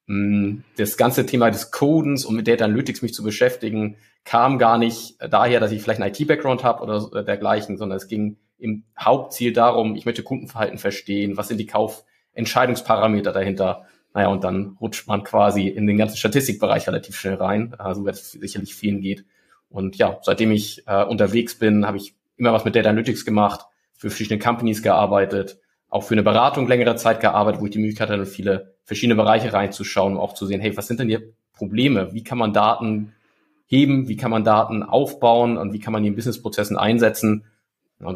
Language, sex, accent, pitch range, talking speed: German, male, German, 100-120 Hz, 190 wpm